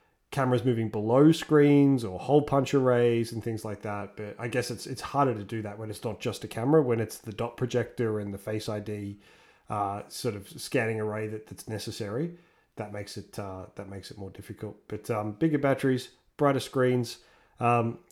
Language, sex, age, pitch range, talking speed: English, male, 20-39, 110-135 Hz, 200 wpm